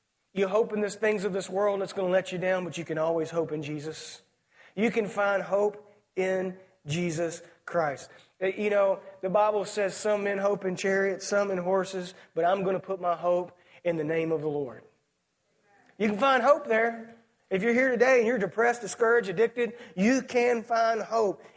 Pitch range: 170-215 Hz